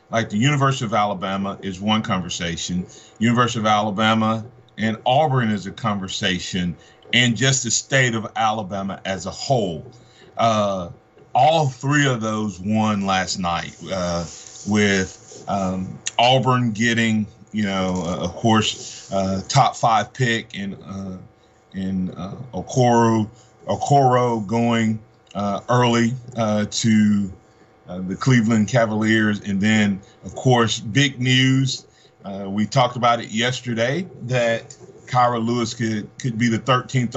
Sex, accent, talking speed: male, American, 130 wpm